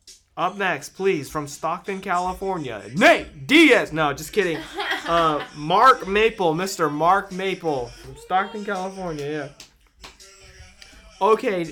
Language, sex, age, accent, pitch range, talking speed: English, male, 20-39, American, 155-205 Hz, 115 wpm